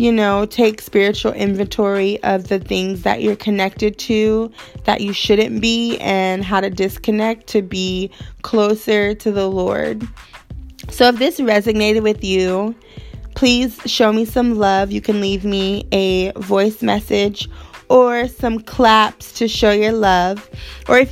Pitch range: 195-230 Hz